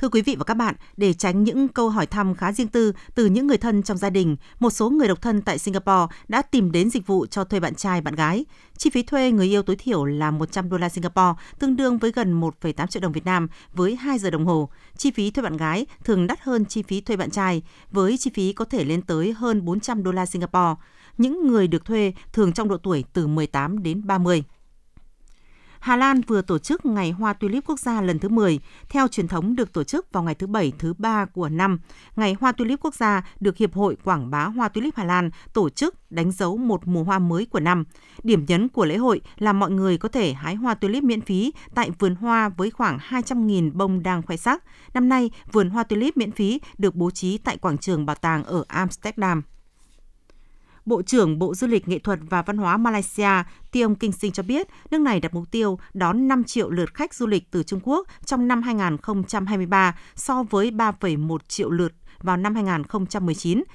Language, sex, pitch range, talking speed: Vietnamese, female, 180-230 Hz, 225 wpm